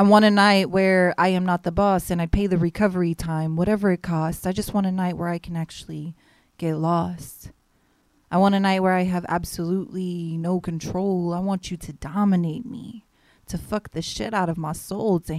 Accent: American